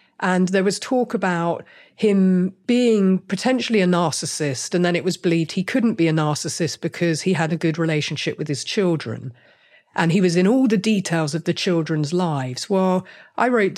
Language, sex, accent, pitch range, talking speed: English, female, British, 160-195 Hz, 185 wpm